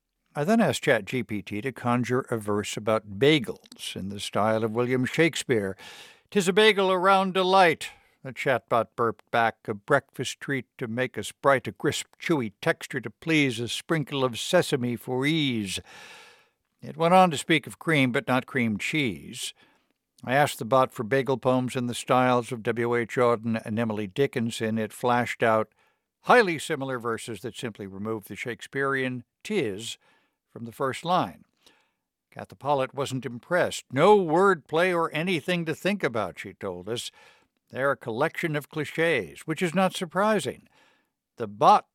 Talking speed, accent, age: 160 wpm, American, 60-79